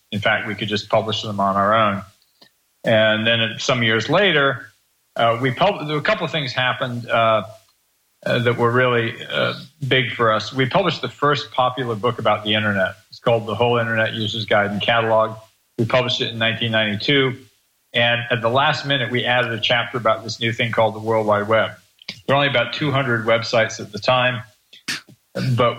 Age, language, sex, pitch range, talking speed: 40-59, English, male, 110-125 Hz, 200 wpm